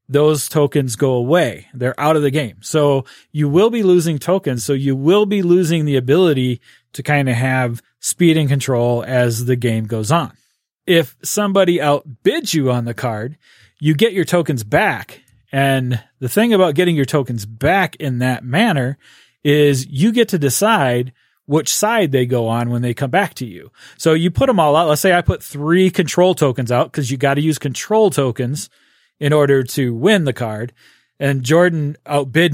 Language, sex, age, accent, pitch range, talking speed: English, male, 30-49, American, 130-165 Hz, 190 wpm